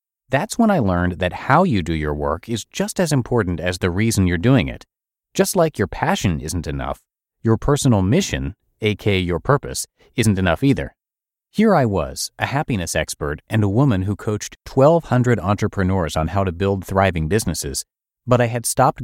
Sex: male